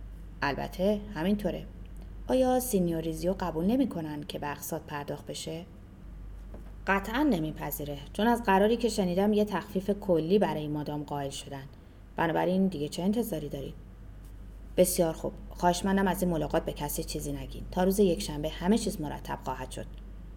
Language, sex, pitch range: Persian, female, 145-210 Hz